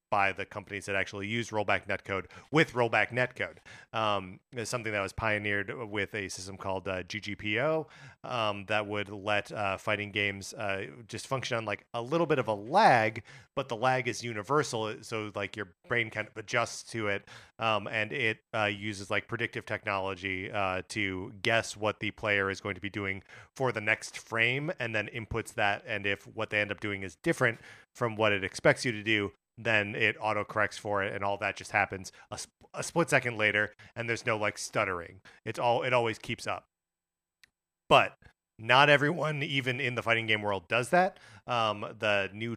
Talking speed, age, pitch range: 195 wpm, 30-49, 100-120 Hz